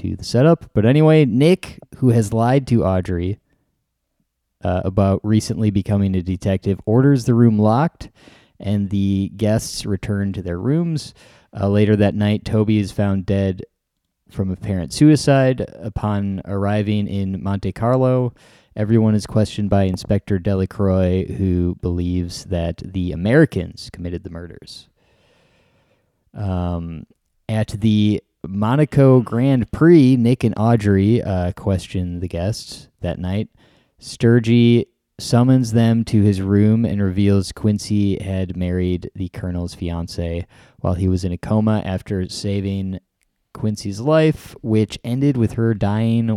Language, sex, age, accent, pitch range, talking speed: English, male, 20-39, American, 95-115 Hz, 130 wpm